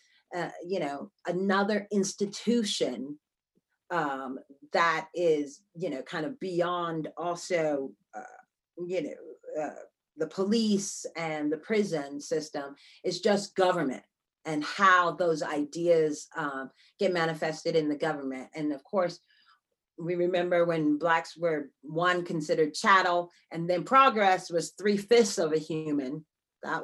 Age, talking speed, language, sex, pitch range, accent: 40-59, 125 wpm, English, female, 160-195 Hz, American